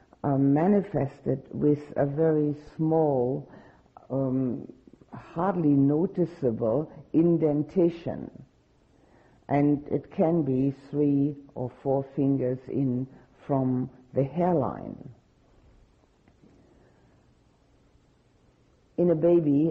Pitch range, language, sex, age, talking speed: 125-150 Hz, English, female, 50-69, 75 wpm